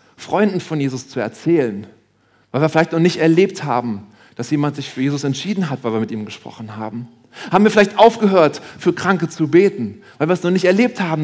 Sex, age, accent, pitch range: male, 40-59, German, 120-180 Hz